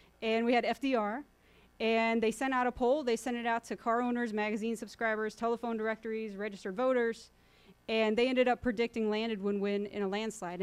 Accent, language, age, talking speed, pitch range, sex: American, English, 30-49, 185 wpm, 205-240 Hz, female